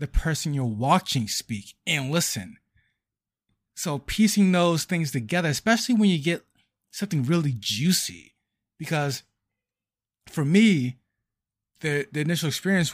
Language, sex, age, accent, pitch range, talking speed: English, male, 30-49, American, 115-175 Hz, 120 wpm